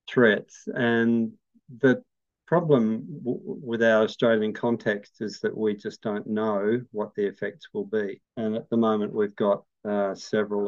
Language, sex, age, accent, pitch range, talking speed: English, male, 50-69, Australian, 105-125 Hz, 150 wpm